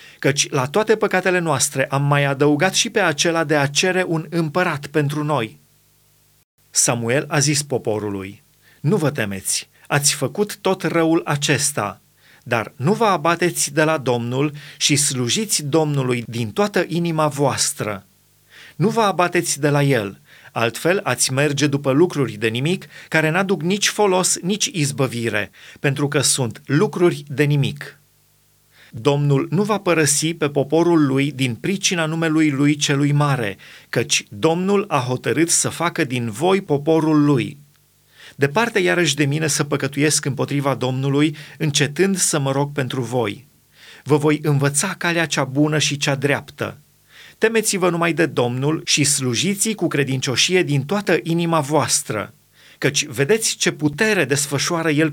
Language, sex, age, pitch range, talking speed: Romanian, male, 30-49, 135-165 Hz, 145 wpm